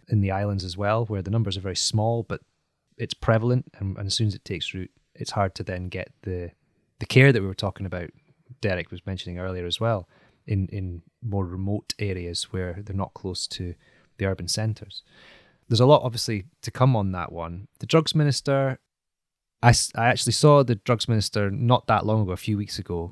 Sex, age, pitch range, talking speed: male, 20-39, 95-120 Hz, 210 wpm